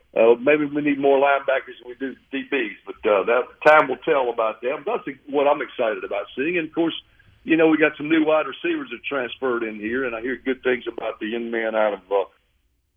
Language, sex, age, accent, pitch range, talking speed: English, male, 60-79, American, 115-165 Hz, 245 wpm